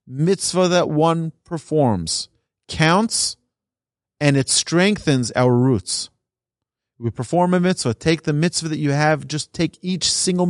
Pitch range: 125-165 Hz